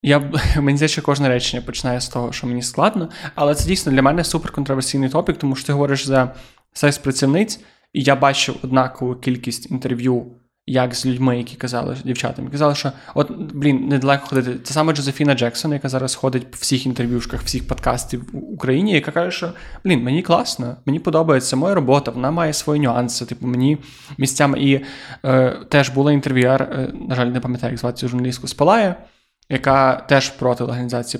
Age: 20-39